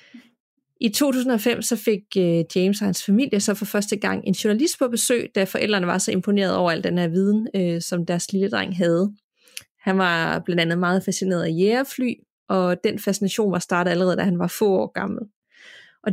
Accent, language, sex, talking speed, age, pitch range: native, Danish, female, 195 wpm, 30-49, 190-230 Hz